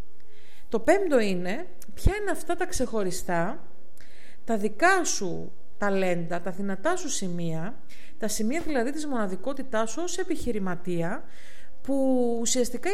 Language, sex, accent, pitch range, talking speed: Greek, female, native, 200-275 Hz, 120 wpm